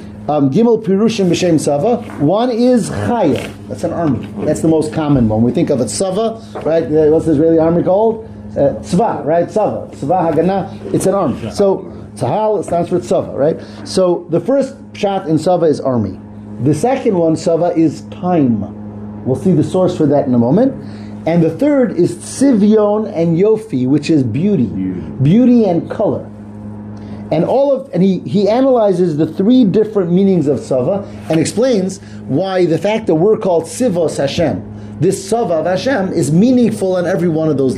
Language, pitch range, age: English, 120-195 Hz, 40-59